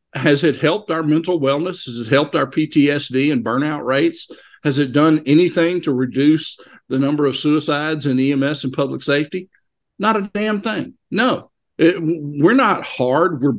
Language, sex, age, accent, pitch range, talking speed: English, male, 50-69, American, 130-165 Hz, 170 wpm